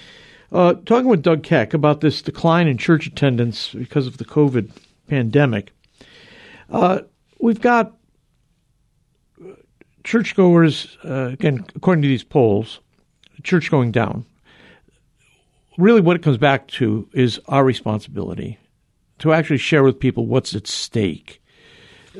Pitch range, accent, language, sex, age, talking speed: 120-155 Hz, American, English, male, 60-79, 125 wpm